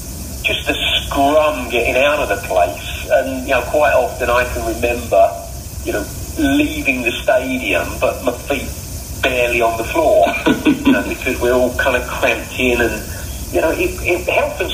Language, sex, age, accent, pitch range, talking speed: English, male, 40-59, British, 100-130 Hz, 180 wpm